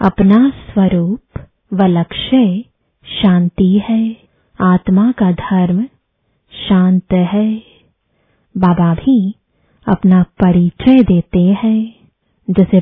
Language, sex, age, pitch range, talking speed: English, female, 20-39, 180-220 Hz, 85 wpm